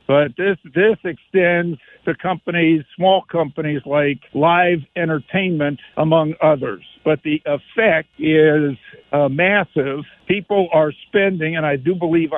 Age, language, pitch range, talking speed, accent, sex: 60-79, English, 150-180 Hz, 125 wpm, American, male